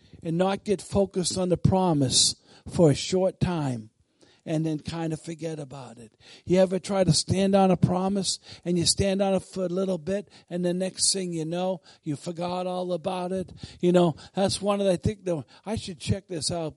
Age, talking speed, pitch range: 50-69, 210 wpm, 160-195 Hz